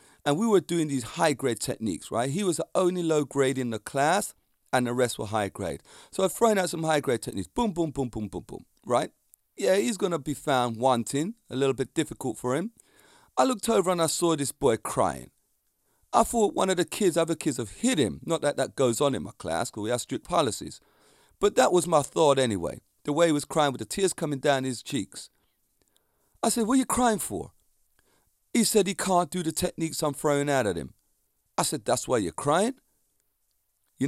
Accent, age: British, 40-59